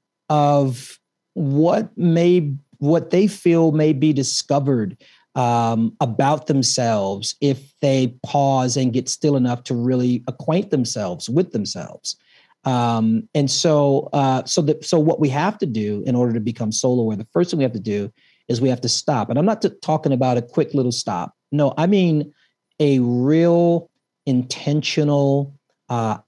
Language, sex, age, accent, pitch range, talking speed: English, male, 40-59, American, 125-150 Hz, 165 wpm